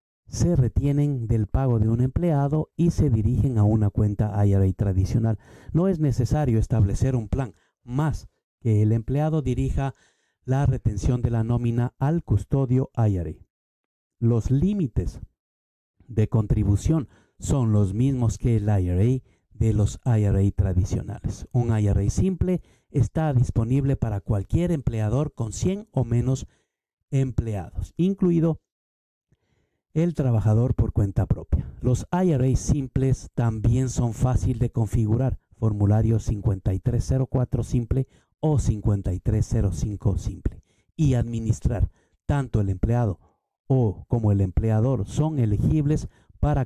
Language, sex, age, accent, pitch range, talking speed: Spanish, male, 50-69, Mexican, 105-130 Hz, 120 wpm